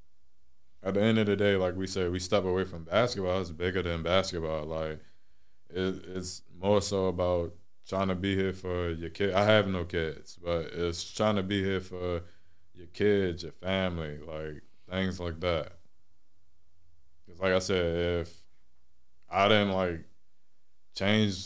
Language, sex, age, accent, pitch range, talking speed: English, male, 20-39, American, 85-100 Hz, 165 wpm